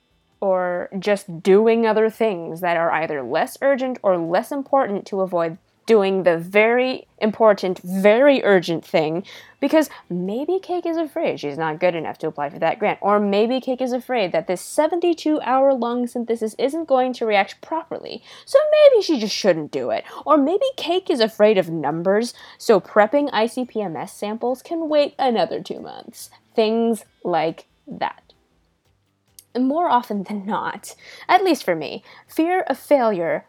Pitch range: 180-285 Hz